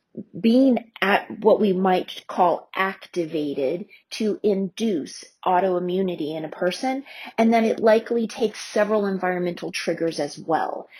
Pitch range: 185-230 Hz